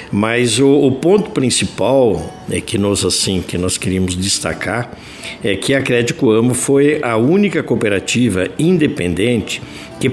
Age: 60-79